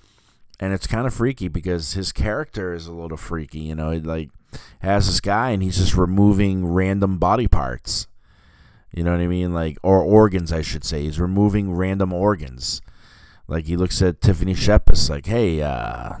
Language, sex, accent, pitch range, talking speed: English, male, American, 85-105 Hz, 185 wpm